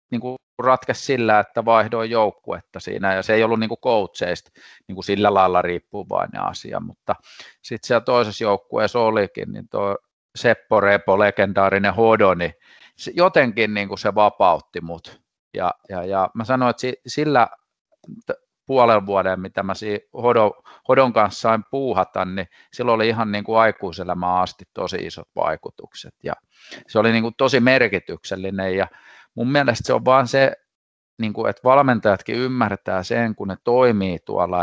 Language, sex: Finnish, male